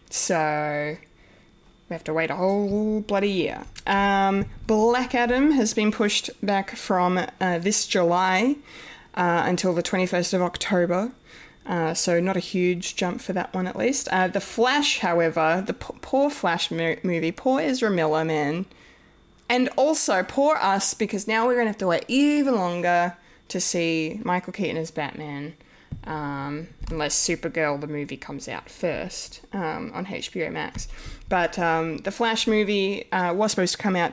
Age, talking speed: 20-39, 160 wpm